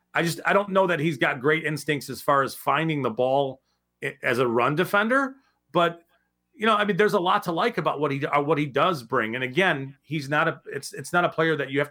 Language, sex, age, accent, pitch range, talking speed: English, male, 40-59, American, 130-170 Hz, 255 wpm